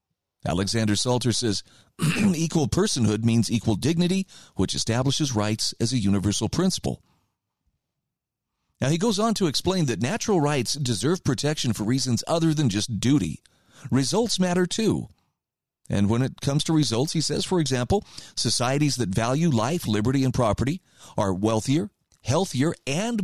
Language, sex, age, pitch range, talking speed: English, male, 40-59, 115-160 Hz, 145 wpm